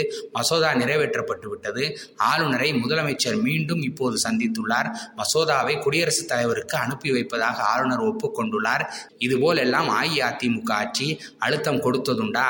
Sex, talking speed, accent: male, 90 wpm, native